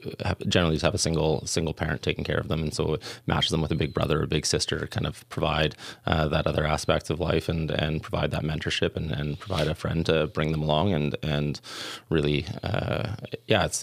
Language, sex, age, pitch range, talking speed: English, male, 20-39, 75-85 Hz, 230 wpm